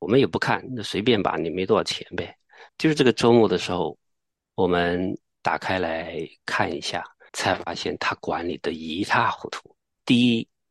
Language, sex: Chinese, male